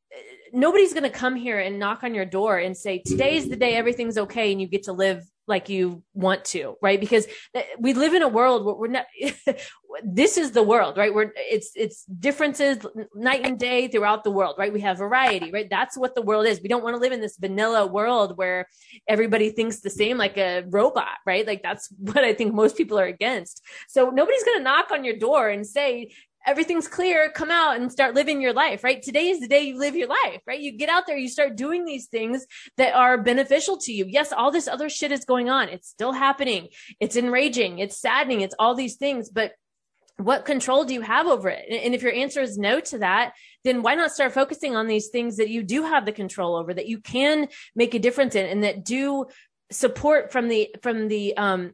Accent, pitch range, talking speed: American, 210-270 Hz, 230 wpm